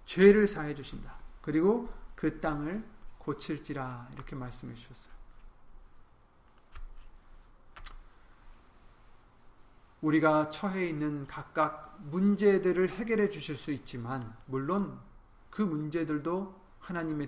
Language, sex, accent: Korean, male, native